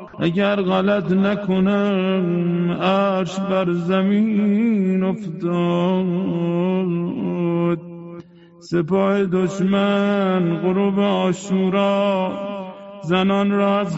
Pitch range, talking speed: 185-205 Hz, 60 wpm